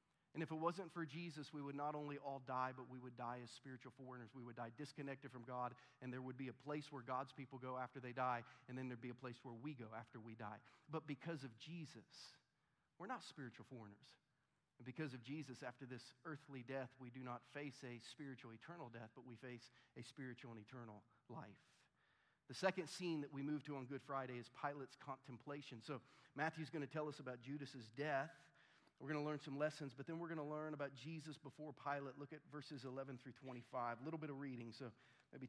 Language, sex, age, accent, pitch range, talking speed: English, male, 40-59, American, 125-150 Hz, 225 wpm